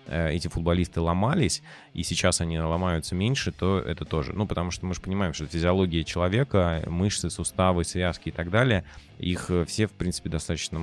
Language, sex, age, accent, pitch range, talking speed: Russian, male, 20-39, native, 80-95 Hz, 170 wpm